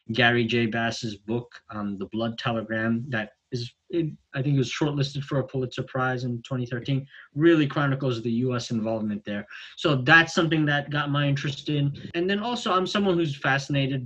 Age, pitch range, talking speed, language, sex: 20-39, 115-145 Hz, 190 wpm, English, male